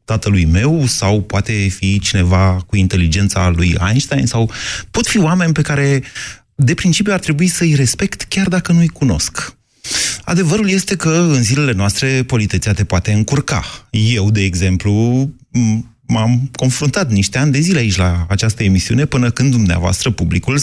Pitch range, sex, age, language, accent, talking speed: 95-135 Hz, male, 30-49, Romanian, native, 155 wpm